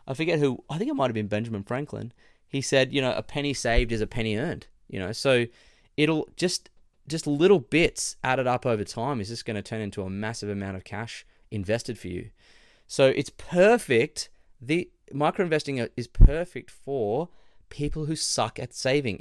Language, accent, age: English, Australian, 20-39